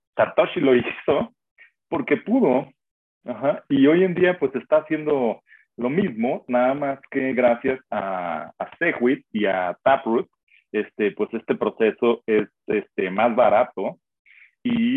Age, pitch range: 40-59, 110-145 Hz